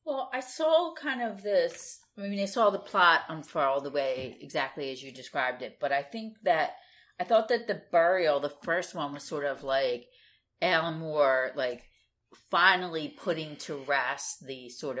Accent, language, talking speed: American, English, 175 wpm